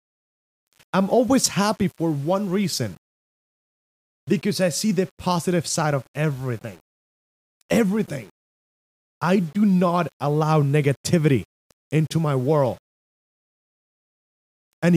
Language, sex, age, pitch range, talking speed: English, male, 30-49, 110-180 Hz, 95 wpm